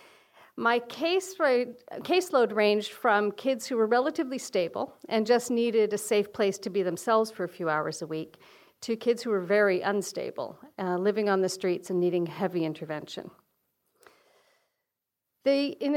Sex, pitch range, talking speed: female, 190-260 Hz, 150 wpm